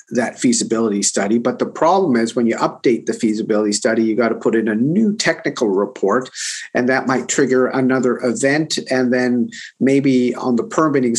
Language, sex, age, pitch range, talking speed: English, male, 50-69, 120-140 Hz, 180 wpm